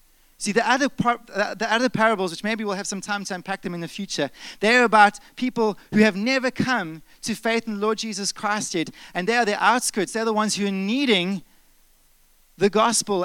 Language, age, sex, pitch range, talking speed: English, 30-49, male, 150-210 Hz, 215 wpm